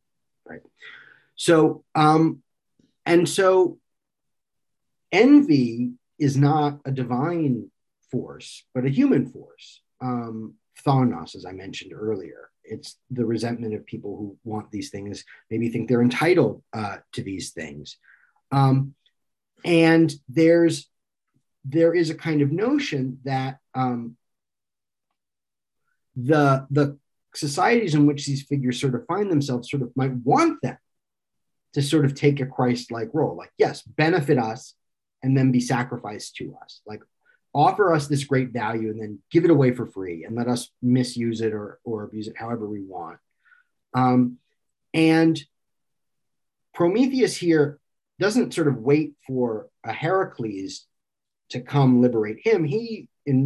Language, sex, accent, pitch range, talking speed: English, male, American, 120-160 Hz, 140 wpm